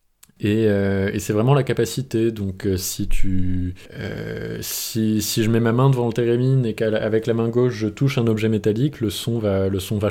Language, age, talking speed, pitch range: French, 20-39, 215 wpm, 95-120 Hz